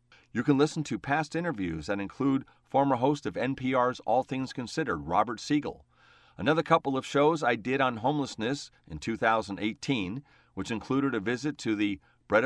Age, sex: 40-59, male